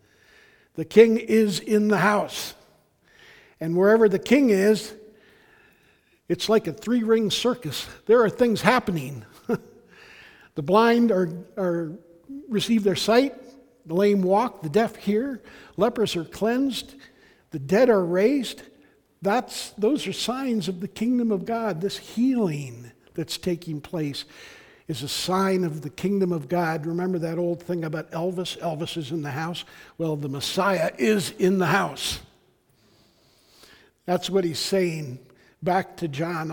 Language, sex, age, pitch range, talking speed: English, male, 60-79, 165-215 Hz, 145 wpm